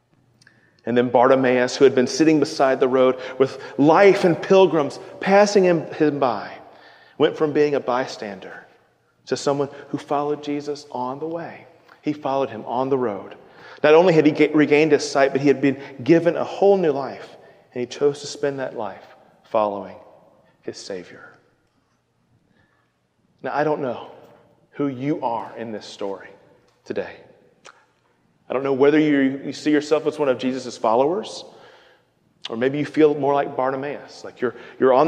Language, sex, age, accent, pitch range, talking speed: English, male, 40-59, American, 135-180 Hz, 170 wpm